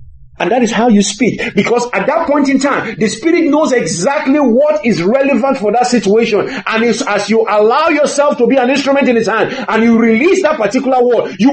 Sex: male